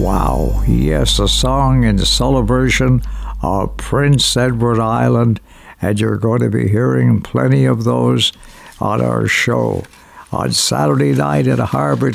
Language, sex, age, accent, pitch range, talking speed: English, male, 60-79, American, 110-140 Hz, 140 wpm